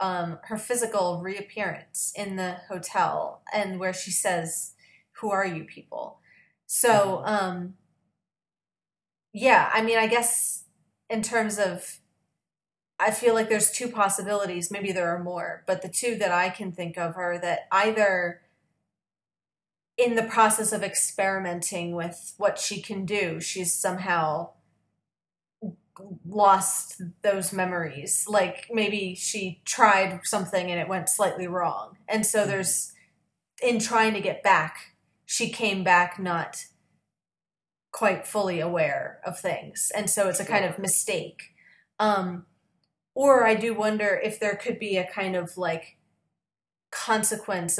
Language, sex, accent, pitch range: English, female, American, 180-210 Hz